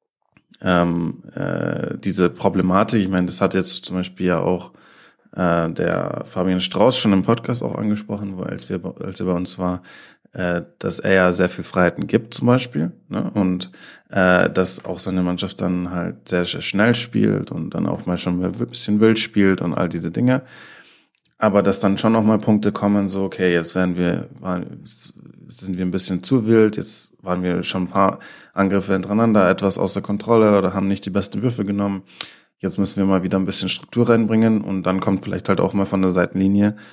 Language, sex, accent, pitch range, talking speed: German, male, German, 90-100 Hz, 200 wpm